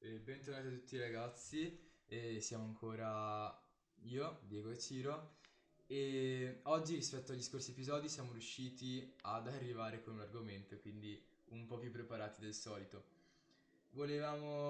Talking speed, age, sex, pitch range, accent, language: 130 wpm, 10-29, male, 105-135 Hz, native, Italian